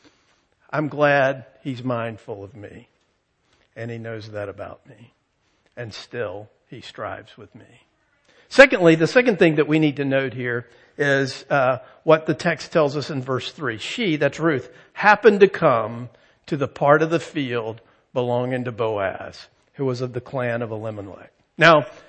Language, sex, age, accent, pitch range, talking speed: English, male, 50-69, American, 135-185 Hz, 165 wpm